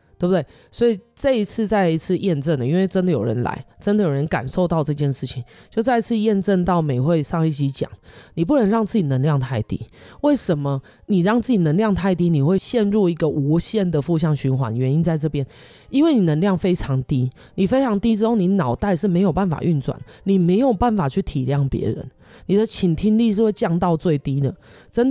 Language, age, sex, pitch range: Chinese, 20-39, female, 155-215 Hz